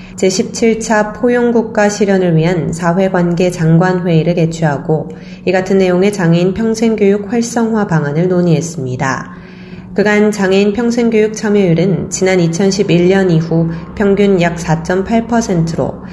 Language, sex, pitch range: Korean, female, 170-205 Hz